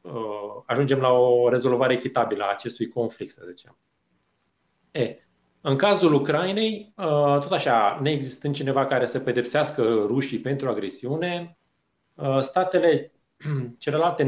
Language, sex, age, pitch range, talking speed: Romanian, male, 30-49, 105-140 Hz, 110 wpm